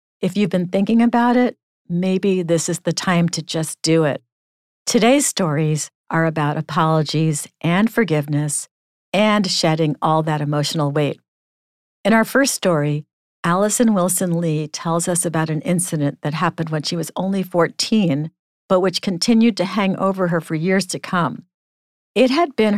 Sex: female